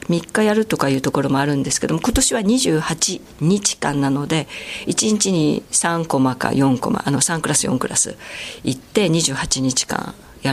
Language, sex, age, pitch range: Japanese, female, 50-69, 135-195 Hz